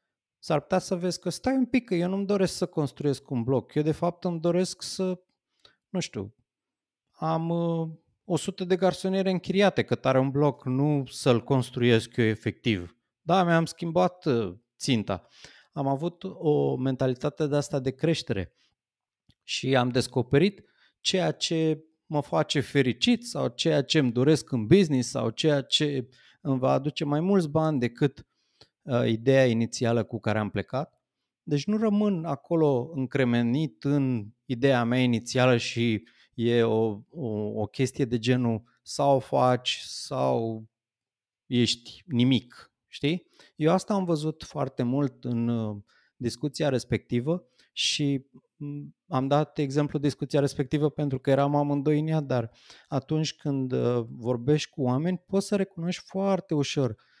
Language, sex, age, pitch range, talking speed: Romanian, male, 30-49, 120-165 Hz, 140 wpm